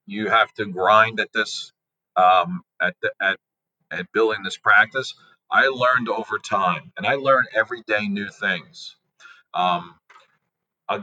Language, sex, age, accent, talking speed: English, male, 40-59, American, 145 wpm